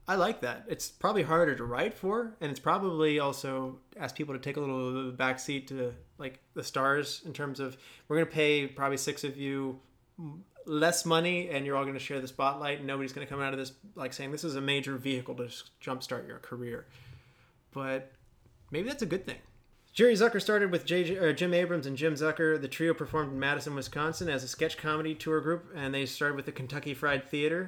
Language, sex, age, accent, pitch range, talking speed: English, male, 30-49, American, 130-155 Hz, 215 wpm